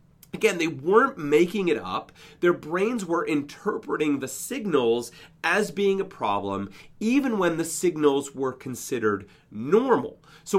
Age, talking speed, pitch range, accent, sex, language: 40-59, 135 wpm, 135-195 Hz, American, male, English